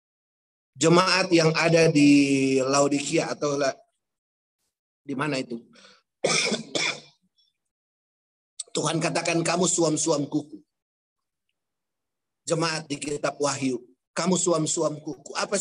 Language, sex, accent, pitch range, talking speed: Indonesian, male, native, 135-165 Hz, 90 wpm